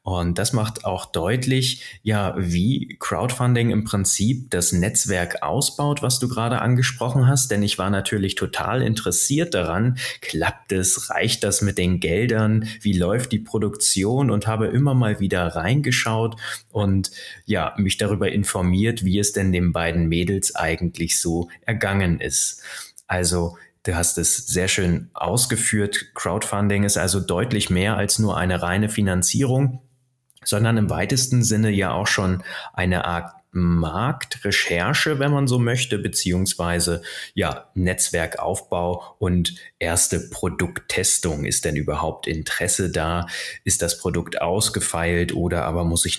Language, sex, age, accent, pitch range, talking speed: German, male, 30-49, German, 90-115 Hz, 140 wpm